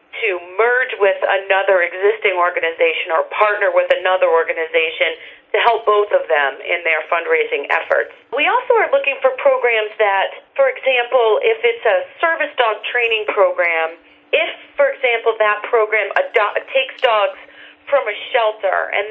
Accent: American